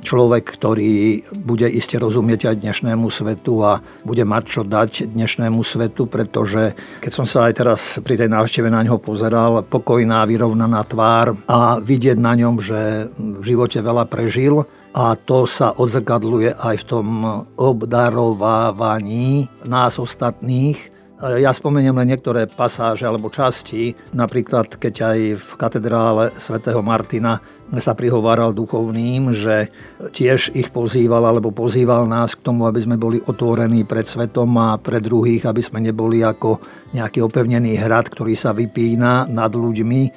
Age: 50-69